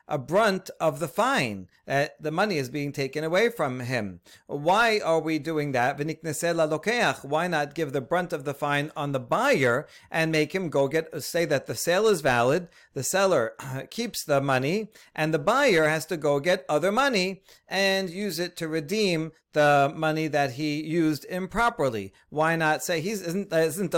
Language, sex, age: English, male, 40-59